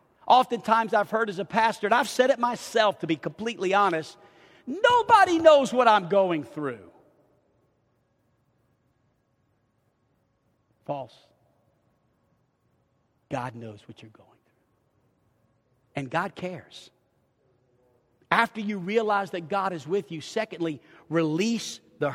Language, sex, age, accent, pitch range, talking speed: English, male, 50-69, American, 140-235 Hz, 115 wpm